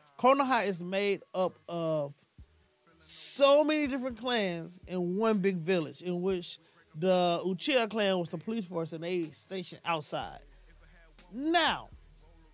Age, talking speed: 20-39, 130 wpm